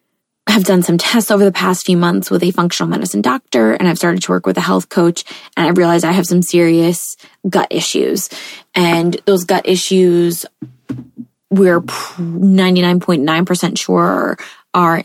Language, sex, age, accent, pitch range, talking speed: English, female, 20-39, American, 170-195 Hz, 160 wpm